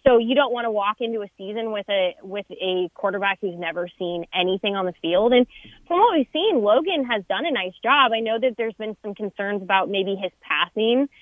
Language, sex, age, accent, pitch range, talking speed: English, female, 20-39, American, 185-255 Hz, 230 wpm